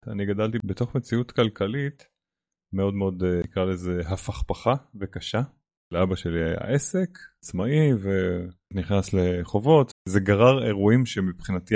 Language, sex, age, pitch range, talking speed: Hebrew, male, 30-49, 95-120 Hz, 110 wpm